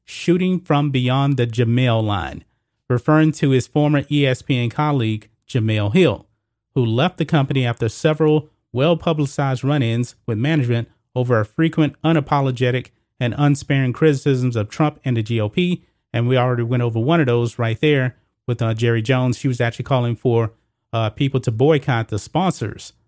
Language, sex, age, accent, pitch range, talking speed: English, male, 30-49, American, 115-145 Hz, 160 wpm